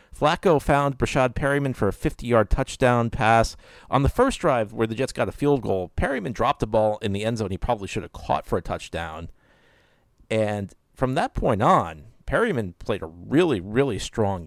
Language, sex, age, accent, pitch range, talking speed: English, male, 50-69, American, 95-120 Hz, 200 wpm